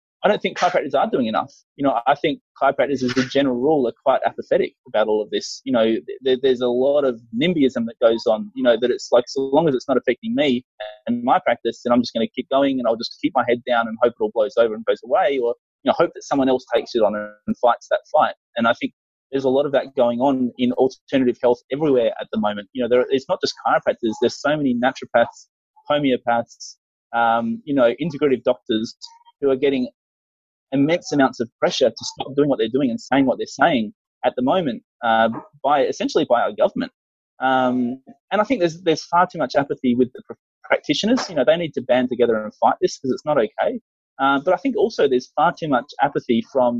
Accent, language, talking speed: Australian, English, 235 wpm